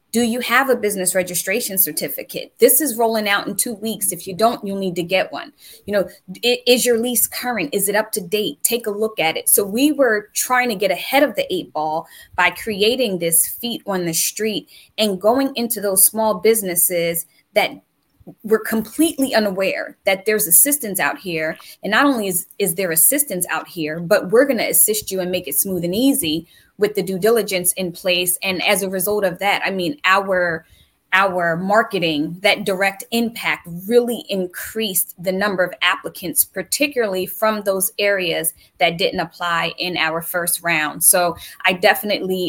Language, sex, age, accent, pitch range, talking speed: English, female, 20-39, American, 175-215 Hz, 185 wpm